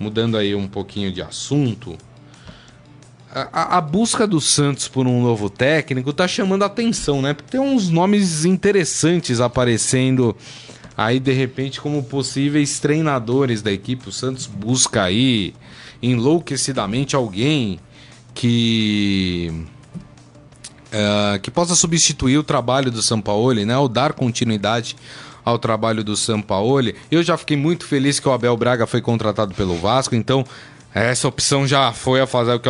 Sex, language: male, Portuguese